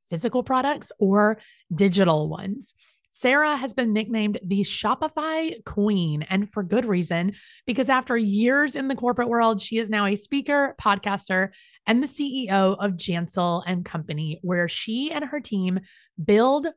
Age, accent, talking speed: 30-49, American, 150 wpm